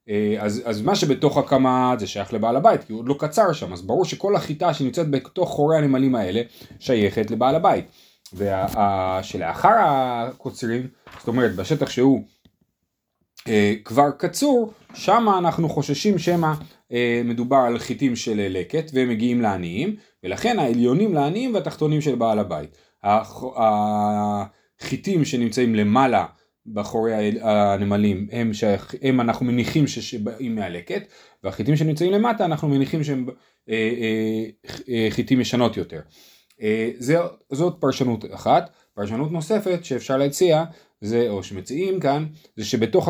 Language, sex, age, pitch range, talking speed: Hebrew, male, 30-49, 115-160 Hz, 130 wpm